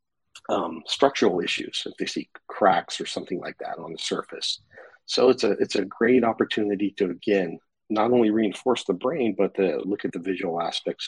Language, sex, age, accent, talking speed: English, male, 50-69, American, 190 wpm